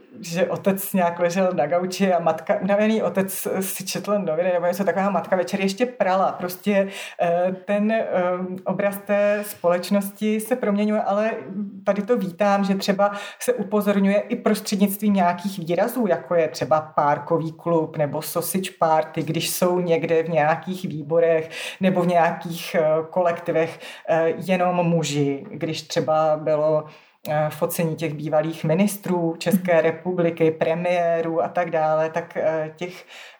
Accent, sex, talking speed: native, female, 135 wpm